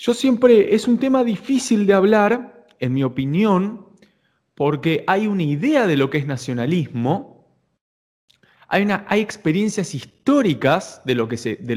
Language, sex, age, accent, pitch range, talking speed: Spanish, male, 20-39, Argentinian, 140-200 Hz, 155 wpm